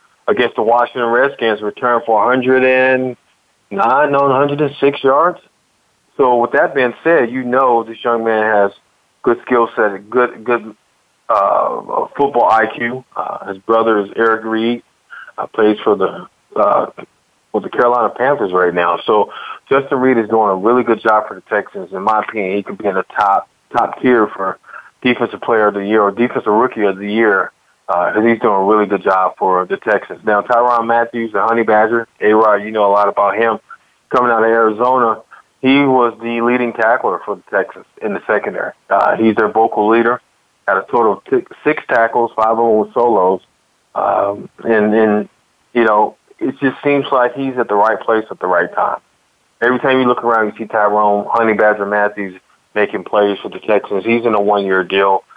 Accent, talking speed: American, 190 wpm